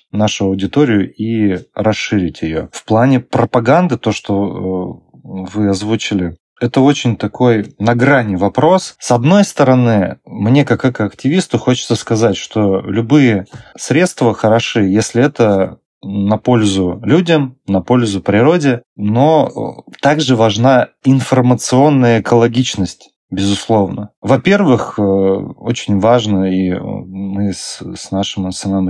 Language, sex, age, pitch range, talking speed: Russian, male, 30-49, 100-120 Hz, 110 wpm